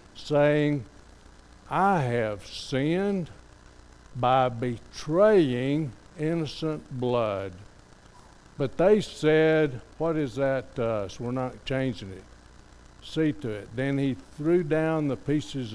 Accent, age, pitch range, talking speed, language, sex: American, 60-79, 115-155 Hz, 110 wpm, English, male